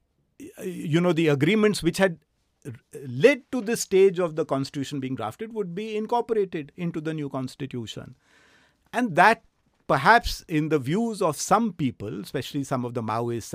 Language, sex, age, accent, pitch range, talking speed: English, male, 50-69, Indian, 150-210 Hz, 160 wpm